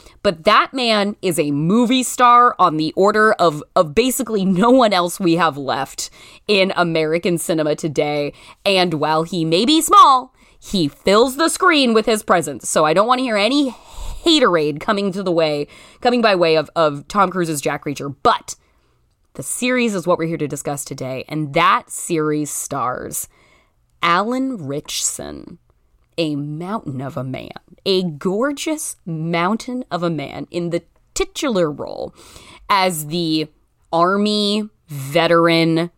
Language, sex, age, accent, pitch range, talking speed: English, female, 20-39, American, 155-210 Hz, 155 wpm